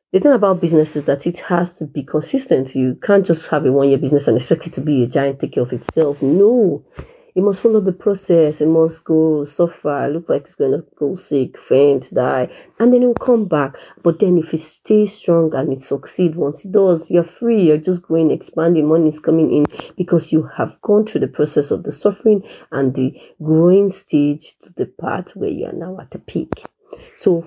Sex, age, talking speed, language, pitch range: female, 30-49, 225 wpm, English, 145-190 Hz